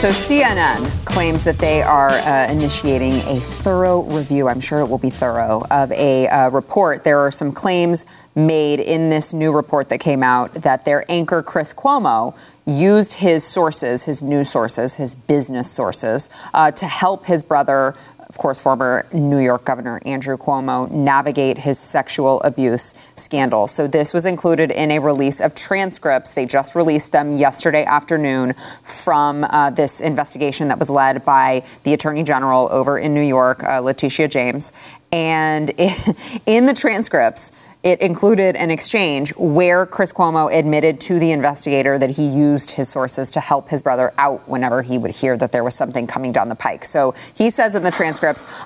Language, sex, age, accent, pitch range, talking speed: English, female, 30-49, American, 135-165 Hz, 175 wpm